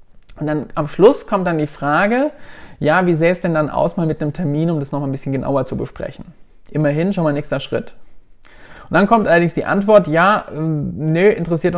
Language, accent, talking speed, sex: German, German, 210 wpm, male